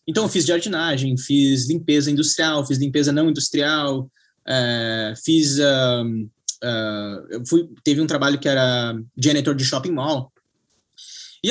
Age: 20-39